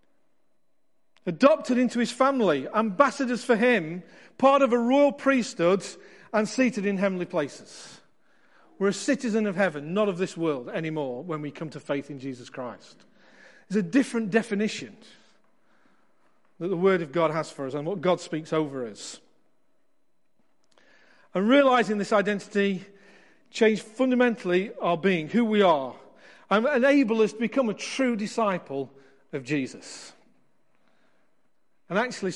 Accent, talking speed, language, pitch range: British, 140 wpm, English, 170-230 Hz